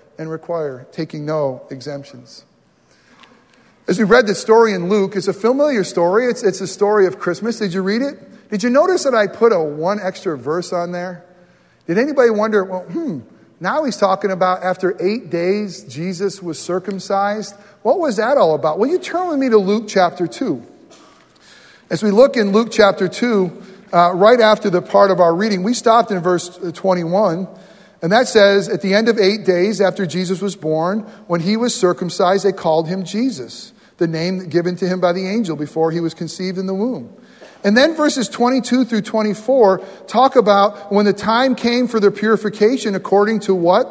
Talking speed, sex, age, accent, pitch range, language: 195 wpm, male, 40-59, American, 180-220 Hz, English